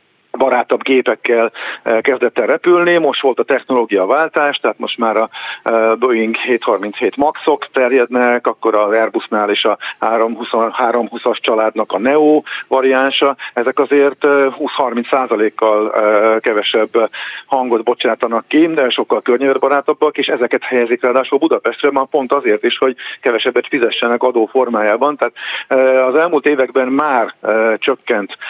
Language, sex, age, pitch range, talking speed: Hungarian, male, 50-69, 120-145 Hz, 125 wpm